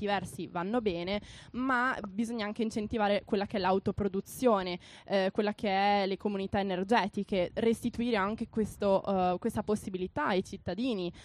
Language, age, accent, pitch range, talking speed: Italian, 20-39, native, 185-235 Hz, 140 wpm